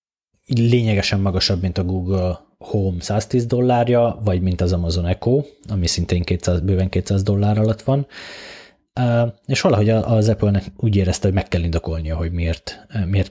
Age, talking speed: 20-39, 150 wpm